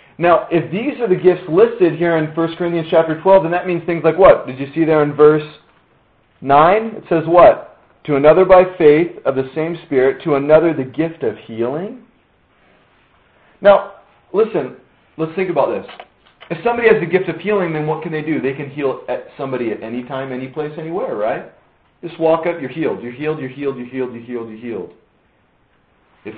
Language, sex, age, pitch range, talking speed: English, male, 40-59, 135-170 Hz, 200 wpm